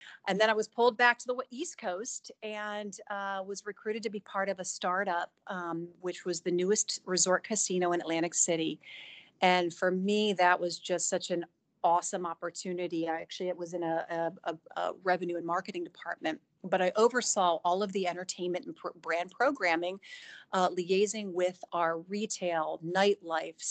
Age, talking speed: 40-59, 170 wpm